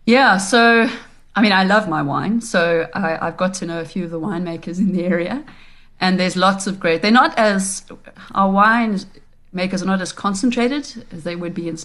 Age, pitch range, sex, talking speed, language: 30-49, 170-195 Hz, female, 225 wpm, English